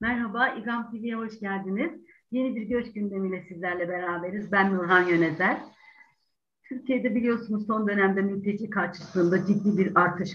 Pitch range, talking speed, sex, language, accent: 180-230 Hz, 135 wpm, female, Turkish, native